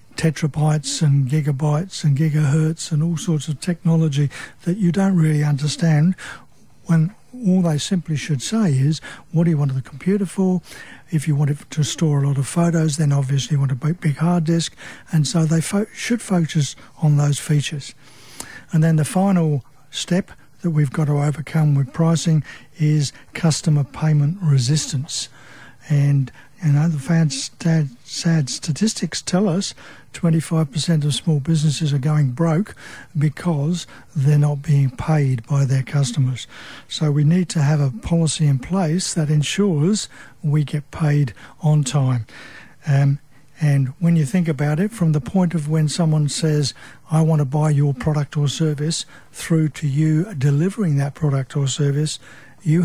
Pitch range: 145-165 Hz